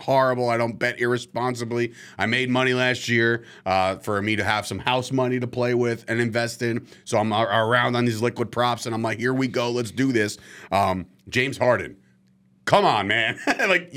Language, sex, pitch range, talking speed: English, male, 95-125 Hz, 205 wpm